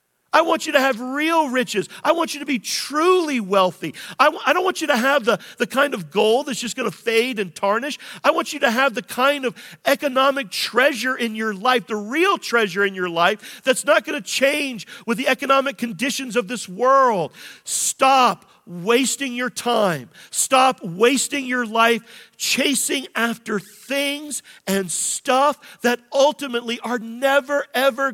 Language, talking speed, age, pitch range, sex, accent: English, 170 wpm, 50-69, 185-260 Hz, male, American